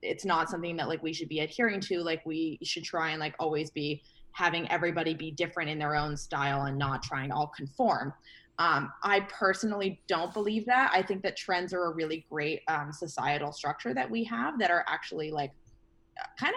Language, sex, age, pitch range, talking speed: English, female, 20-39, 150-195 Hz, 205 wpm